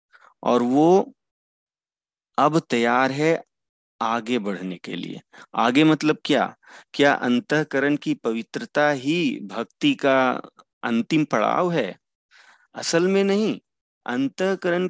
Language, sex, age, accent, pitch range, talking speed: Hindi, male, 40-59, native, 125-180 Hz, 100 wpm